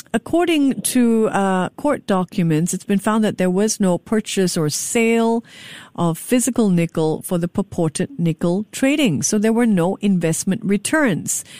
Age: 50-69